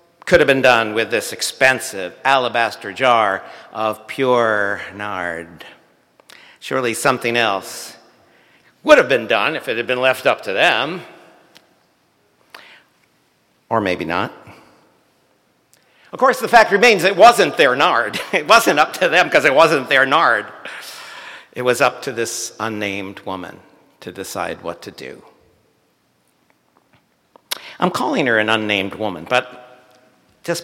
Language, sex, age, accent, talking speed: English, male, 60-79, American, 135 wpm